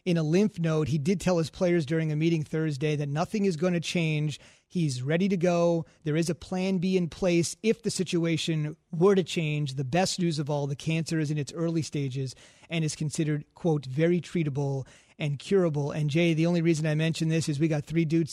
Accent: American